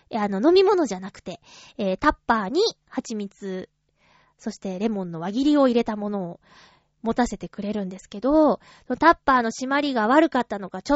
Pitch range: 205-310 Hz